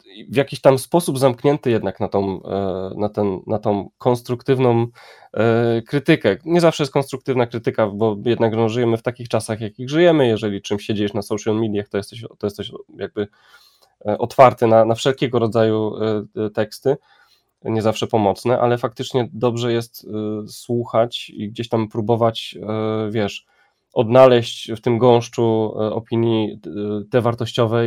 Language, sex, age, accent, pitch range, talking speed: Polish, male, 20-39, native, 105-120 Hz, 140 wpm